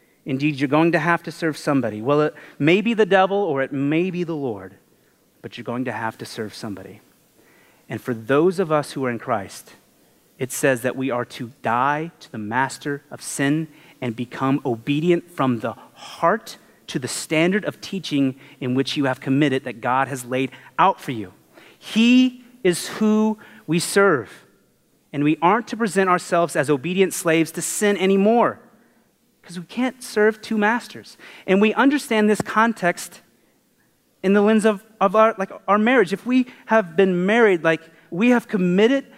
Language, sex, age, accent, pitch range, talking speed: English, male, 30-49, American, 145-215 Hz, 180 wpm